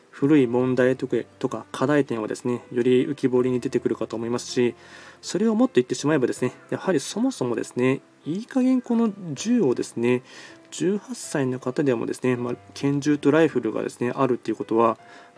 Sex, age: male, 20-39